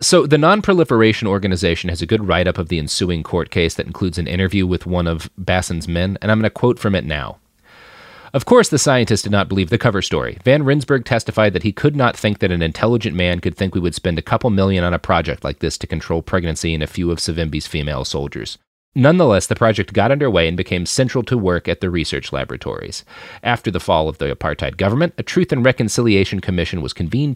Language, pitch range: English, 90-120 Hz